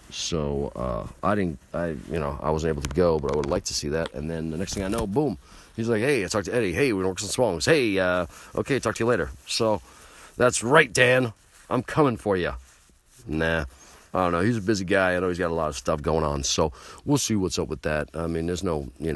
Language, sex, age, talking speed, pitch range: English, male, 40-59, 265 wpm, 75-110 Hz